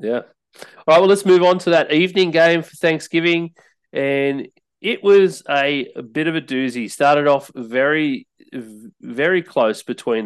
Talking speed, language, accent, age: 165 wpm, English, Australian, 30-49